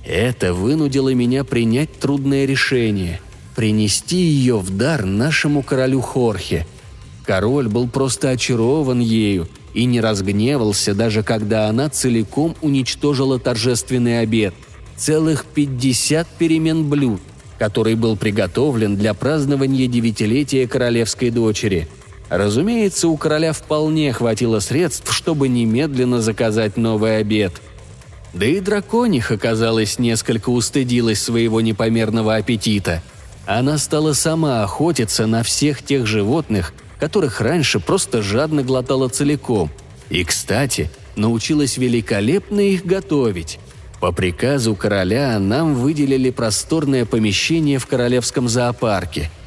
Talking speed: 110 wpm